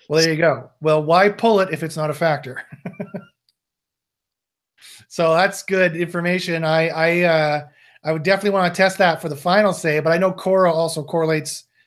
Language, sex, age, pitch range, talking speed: English, male, 30-49, 160-200 Hz, 185 wpm